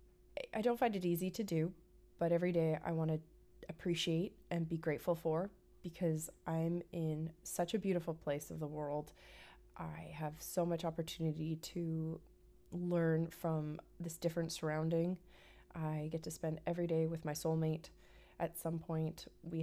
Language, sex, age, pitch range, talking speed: English, female, 20-39, 155-175 Hz, 160 wpm